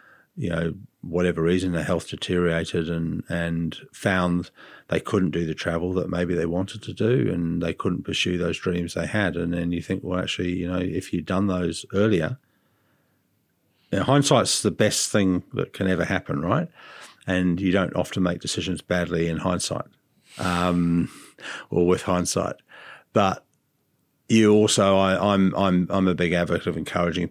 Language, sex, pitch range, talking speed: English, male, 85-95 Hz, 165 wpm